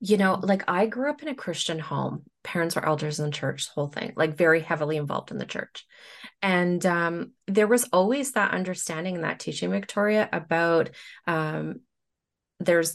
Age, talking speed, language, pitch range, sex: 30-49, 180 wpm, English, 155-210 Hz, female